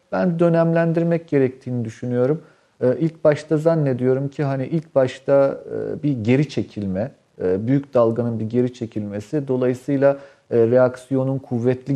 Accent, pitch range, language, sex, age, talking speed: native, 115-150 Hz, Turkish, male, 50-69, 110 wpm